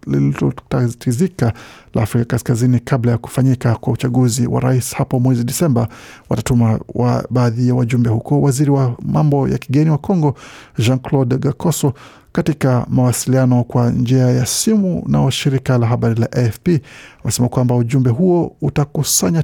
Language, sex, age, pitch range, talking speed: Swahili, male, 50-69, 120-140 Hz, 140 wpm